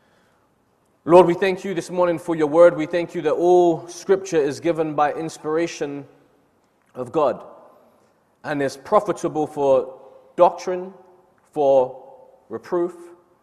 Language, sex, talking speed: English, male, 125 wpm